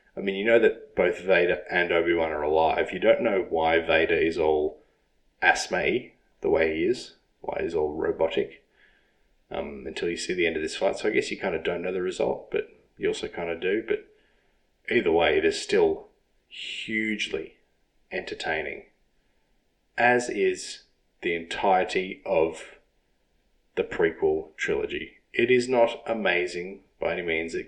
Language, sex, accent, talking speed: English, male, Australian, 165 wpm